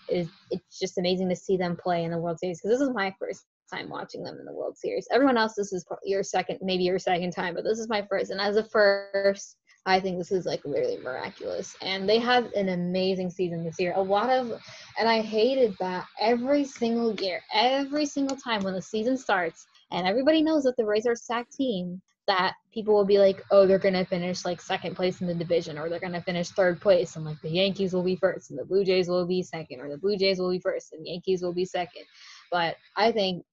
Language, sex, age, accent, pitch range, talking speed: English, female, 10-29, American, 180-210 Hz, 245 wpm